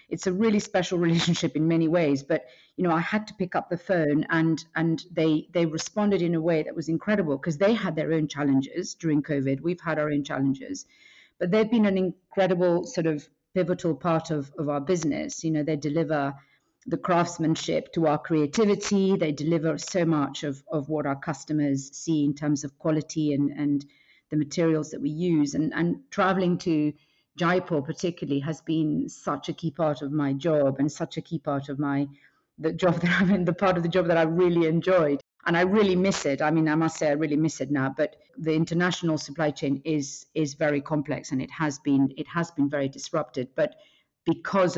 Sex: female